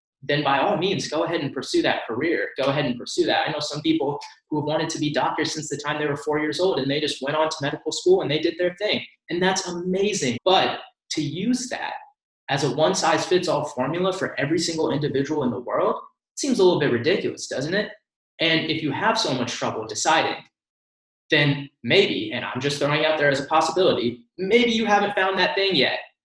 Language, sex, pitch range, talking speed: English, male, 135-165 Hz, 220 wpm